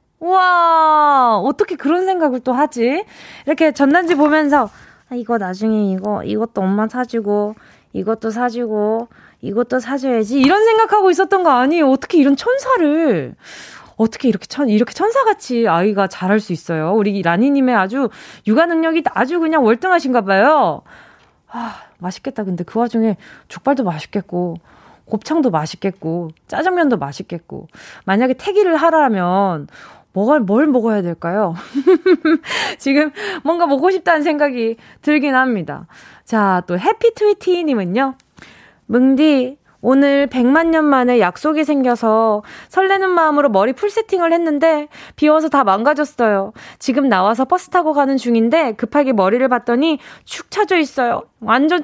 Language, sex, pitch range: Korean, female, 220-320 Hz